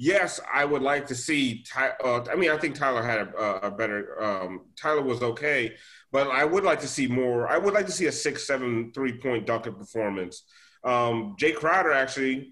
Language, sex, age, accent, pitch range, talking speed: English, male, 30-49, American, 120-150 Hz, 225 wpm